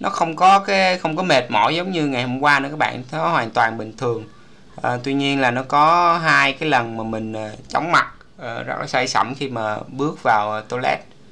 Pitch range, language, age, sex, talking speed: 110-145 Hz, Vietnamese, 20-39, male, 245 wpm